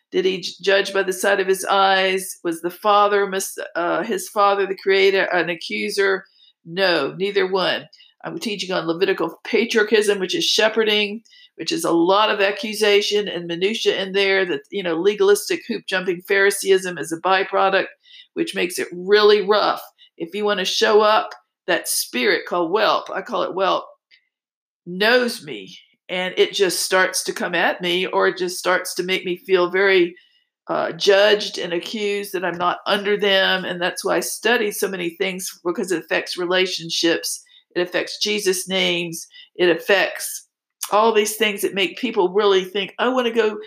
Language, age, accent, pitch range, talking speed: English, 50-69, American, 185-215 Hz, 175 wpm